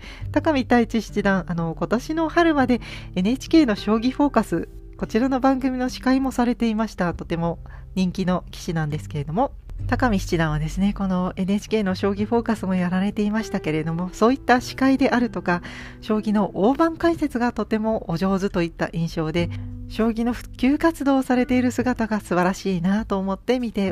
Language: Japanese